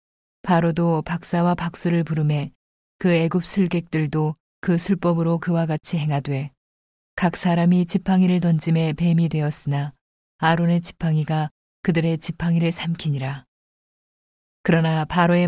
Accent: native